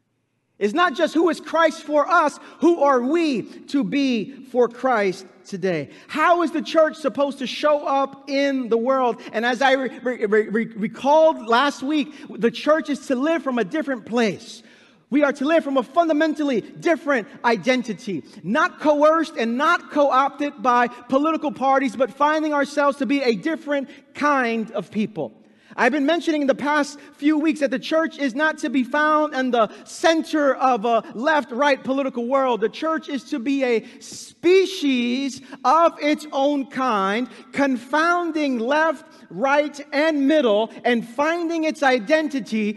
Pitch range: 240-305 Hz